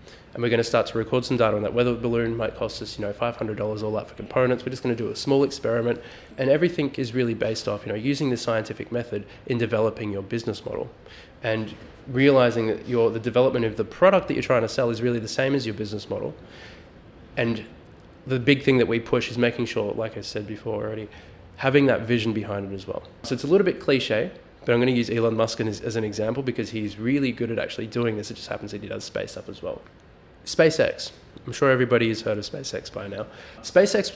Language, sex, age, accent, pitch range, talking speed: English, male, 20-39, Australian, 110-125 Hz, 240 wpm